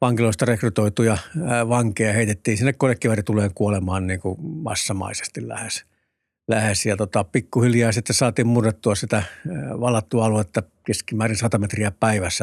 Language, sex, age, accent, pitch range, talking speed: Finnish, male, 60-79, native, 105-120 Hz, 120 wpm